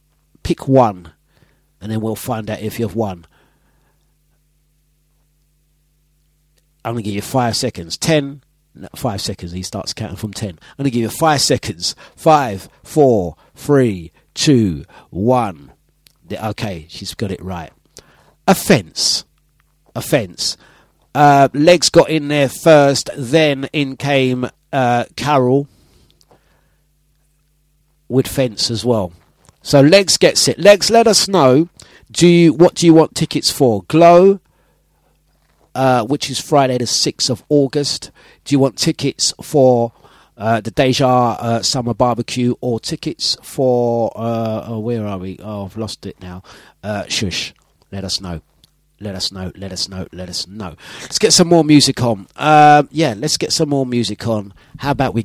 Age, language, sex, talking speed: 50-69, English, male, 155 wpm